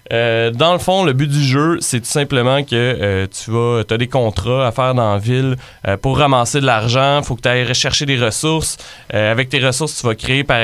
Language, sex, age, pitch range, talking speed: French, male, 20-39, 110-130 Hz, 250 wpm